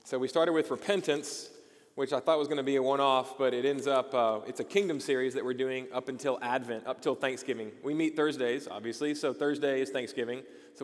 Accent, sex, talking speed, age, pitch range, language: American, male, 235 wpm, 30-49, 125-150 Hz, English